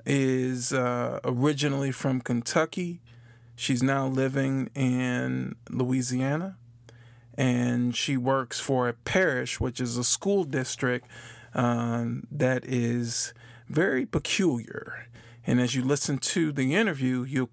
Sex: male